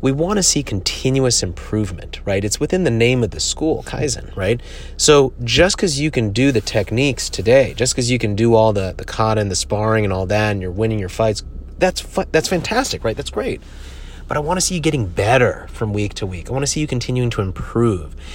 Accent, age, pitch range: American, 30-49, 100-135 Hz